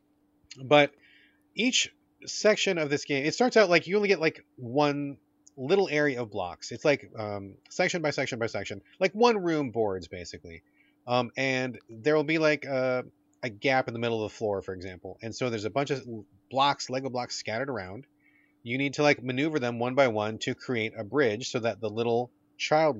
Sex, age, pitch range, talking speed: male, 30-49, 110-150 Hz, 205 wpm